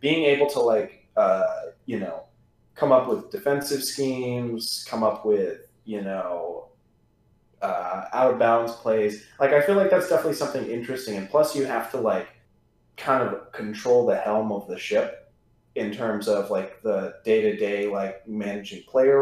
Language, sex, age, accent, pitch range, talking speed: English, male, 30-49, American, 110-160 Hz, 160 wpm